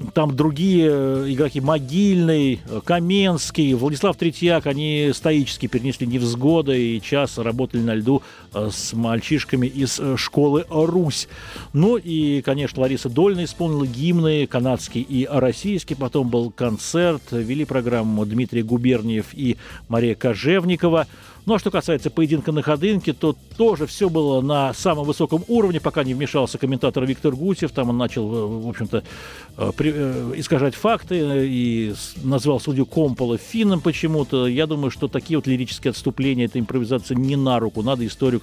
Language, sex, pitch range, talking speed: Russian, male, 125-170 Hz, 140 wpm